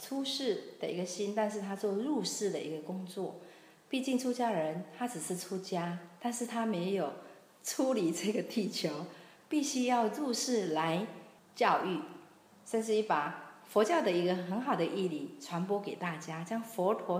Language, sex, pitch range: Chinese, female, 170-225 Hz